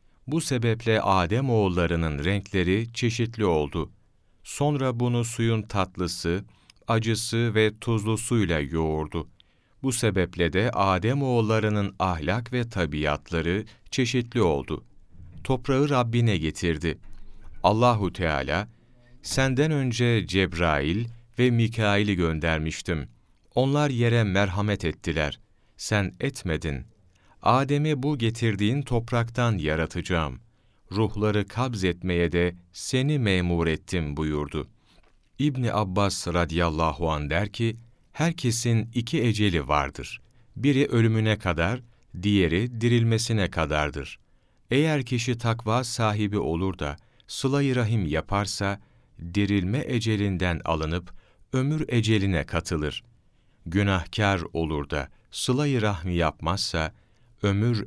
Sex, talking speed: male, 95 wpm